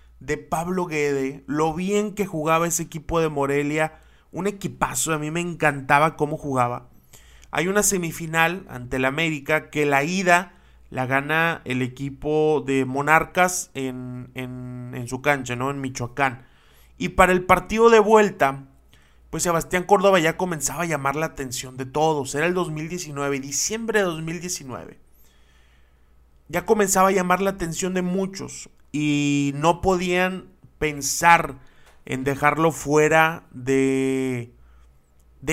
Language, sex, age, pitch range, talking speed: Spanish, male, 30-49, 130-170 Hz, 140 wpm